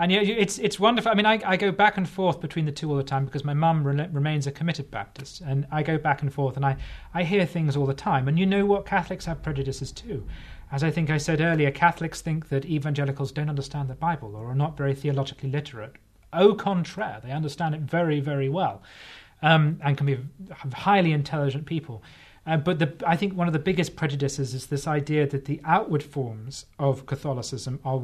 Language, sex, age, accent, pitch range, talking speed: English, male, 30-49, British, 135-165 Hz, 225 wpm